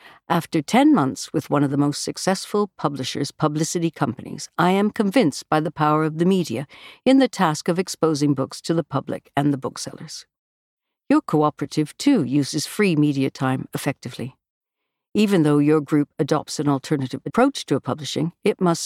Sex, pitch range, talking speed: female, 145-180 Hz, 170 wpm